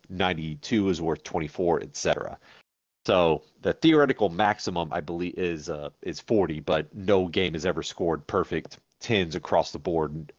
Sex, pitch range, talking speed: male, 85-105 Hz, 150 wpm